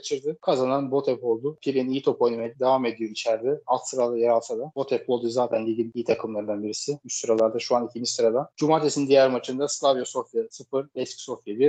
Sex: male